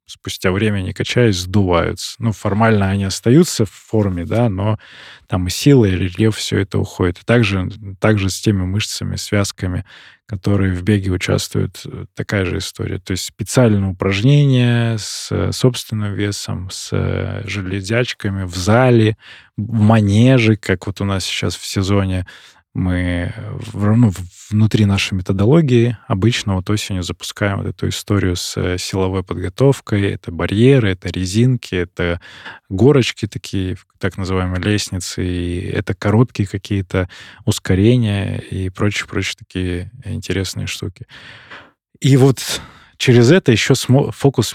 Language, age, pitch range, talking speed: Russian, 20-39, 95-115 Hz, 130 wpm